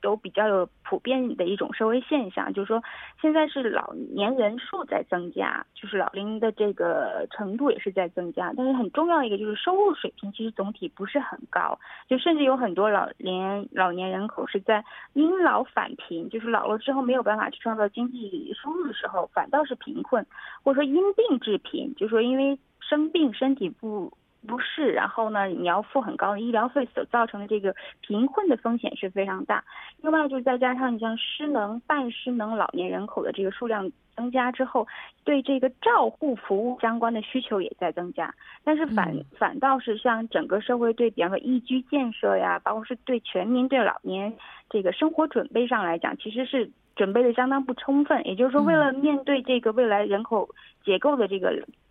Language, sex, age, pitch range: Korean, female, 20-39, 210-280 Hz